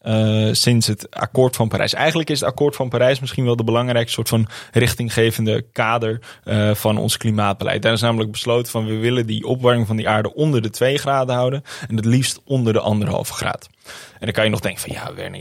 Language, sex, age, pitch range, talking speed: Dutch, male, 20-39, 110-125 Hz, 225 wpm